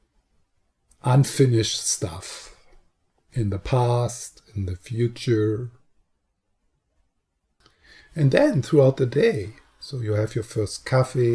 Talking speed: 100 wpm